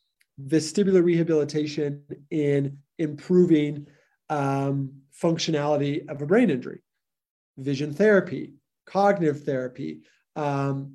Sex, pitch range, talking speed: male, 145-180 Hz, 80 wpm